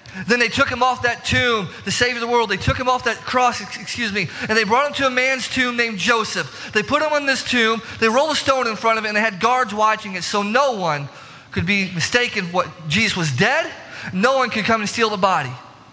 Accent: American